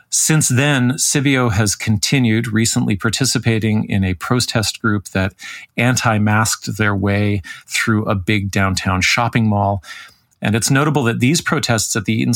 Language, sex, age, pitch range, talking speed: English, male, 40-59, 100-125 Hz, 145 wpm